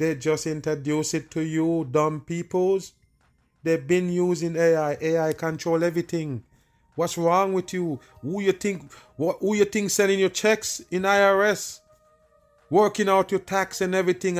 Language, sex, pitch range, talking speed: English, male, 150-180 Hz, 150 wpm